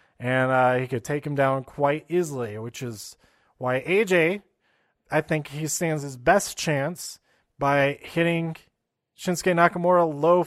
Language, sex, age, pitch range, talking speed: English, male, 30-49, 135-175 Hz, 145 wpm